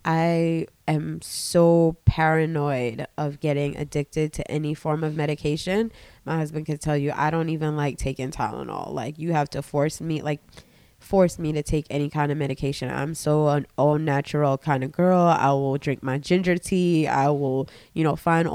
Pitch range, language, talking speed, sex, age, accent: 145-170 Hz, English, 180 wpm, female, 20-39, American